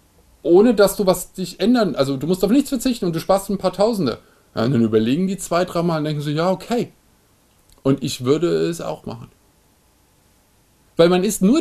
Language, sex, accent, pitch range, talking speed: German, male, German, 135-200 Hz, 200 wpm